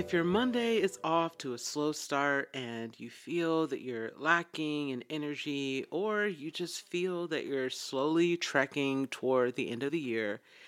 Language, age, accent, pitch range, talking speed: English, 40-59, American, 125-165 Hz, 175 wpm